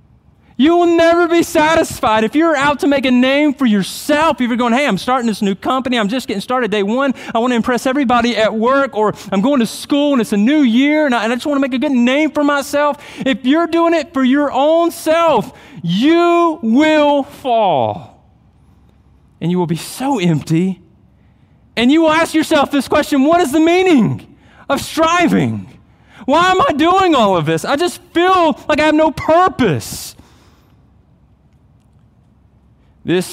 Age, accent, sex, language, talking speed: 30-49, American, male, English, 185 wpm